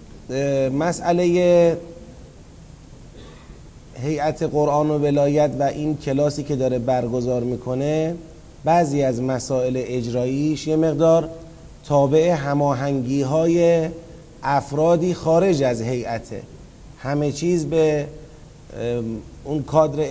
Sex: male